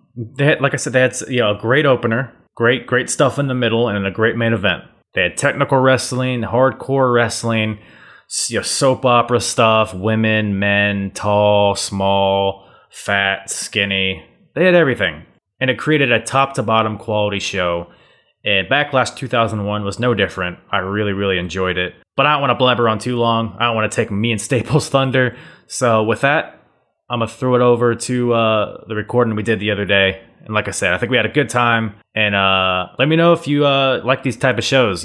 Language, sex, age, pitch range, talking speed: English, male, 20-39, 105-130 Hz, 210 wpm